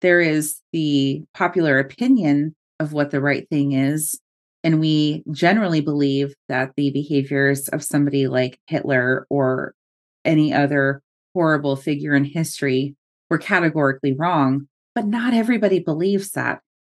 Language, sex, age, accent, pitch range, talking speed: English, female, 30-49, American, 145-190 Hz, 130 wpm